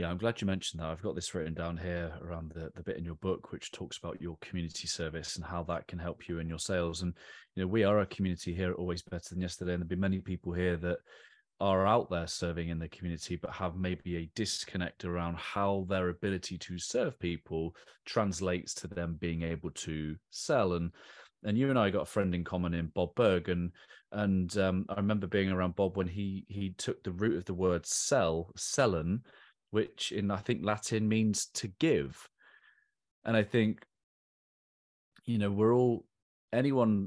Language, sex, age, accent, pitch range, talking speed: English, male, 30-49, British, 85-100 Hz, 205 wpm